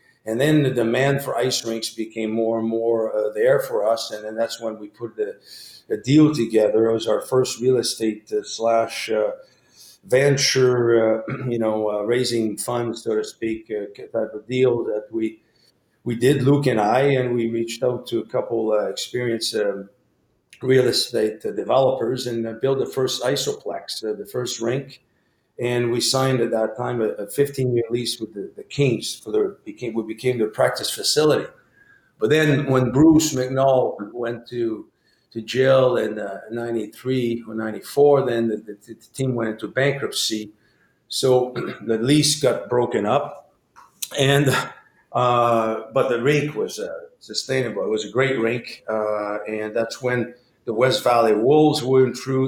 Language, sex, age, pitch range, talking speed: English, male, 50-69, 110-135 Hz, 175 wpm